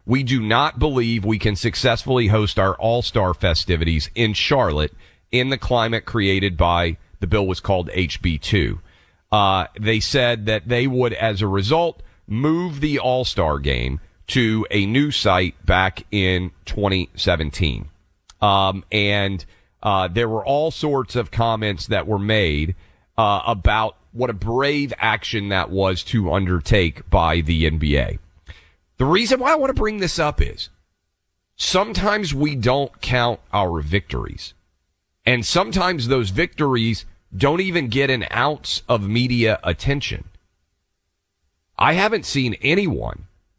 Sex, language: male, English